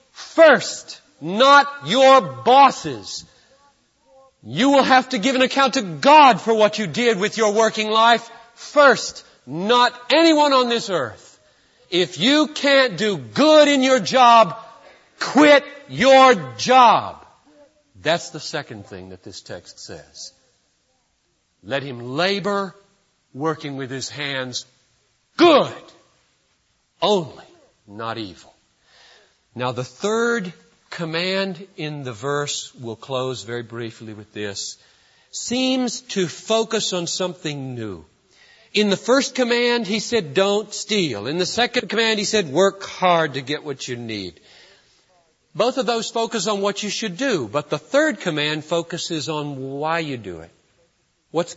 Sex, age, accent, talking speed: male, 50-69, American, 135 wpm